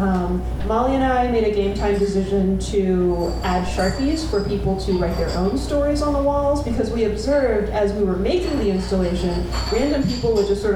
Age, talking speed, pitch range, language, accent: 30-49, 195 wpm, 180-215 Hz, English, American